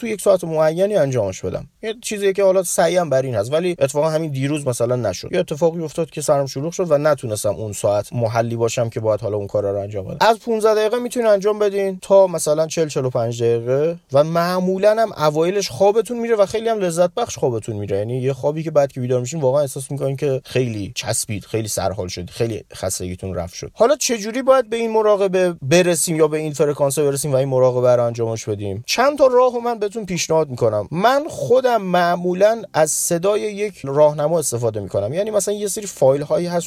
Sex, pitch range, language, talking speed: male, 130-190 Hz, Persian, 210 wpm